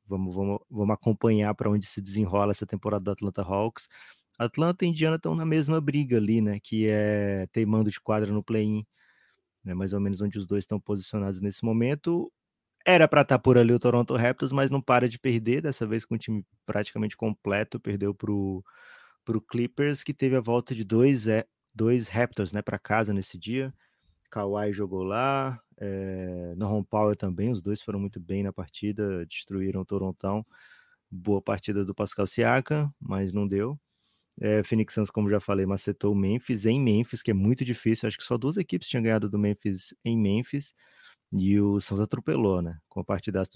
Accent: Brazilian